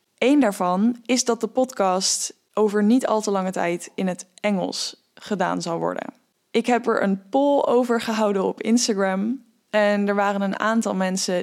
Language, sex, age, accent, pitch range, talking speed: English, female, 10-29, Dutch, 195-225 Hz, 175 wpm